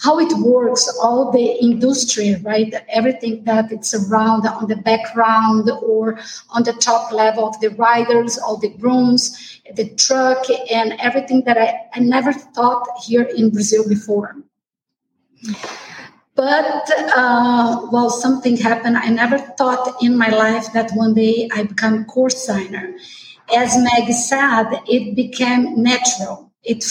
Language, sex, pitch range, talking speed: English, female, 220-255 Hz, 145 wpm